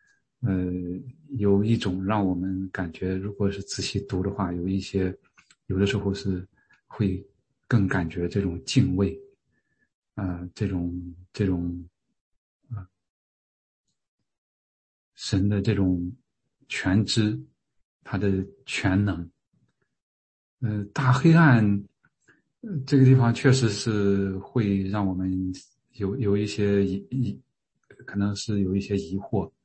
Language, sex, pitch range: English, male, 95-110 Hz